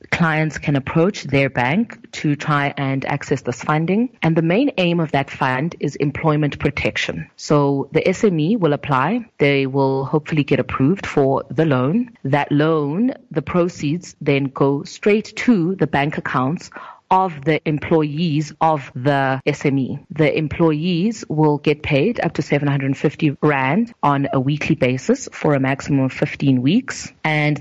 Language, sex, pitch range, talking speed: English, female, 140-175 Hz, 155 wpm